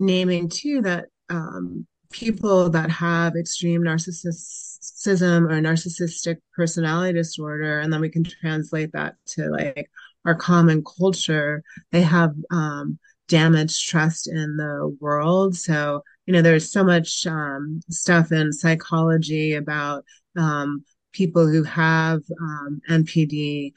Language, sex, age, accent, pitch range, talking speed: English, female, 30-49, American, 150-170 Hz, 125 wpm